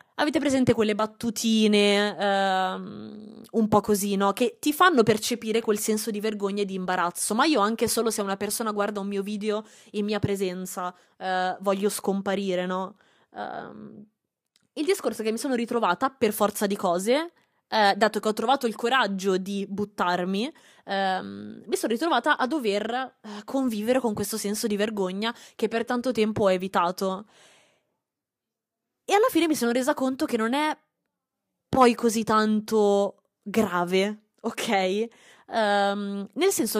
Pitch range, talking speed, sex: 195-235 Hz, 145 wpm, female